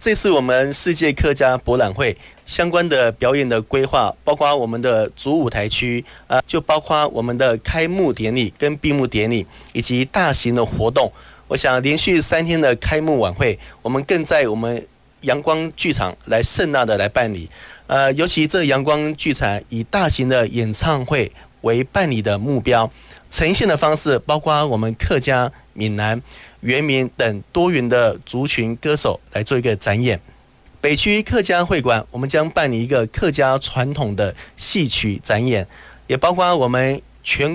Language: Chinese